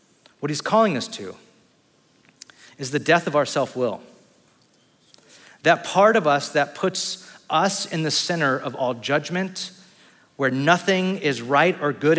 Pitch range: 150-200 Hz